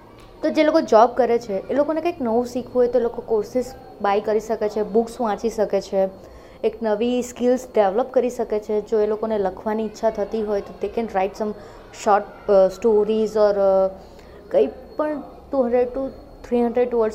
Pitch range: 205-240 Hz